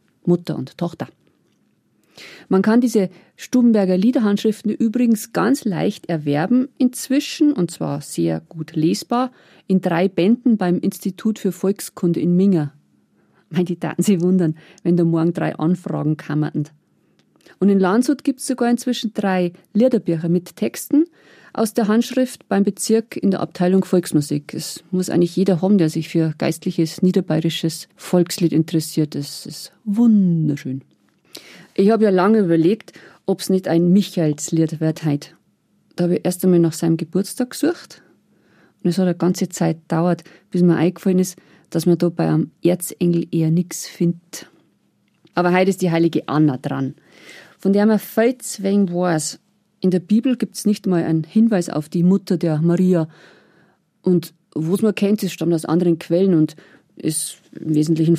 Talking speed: 160 wpm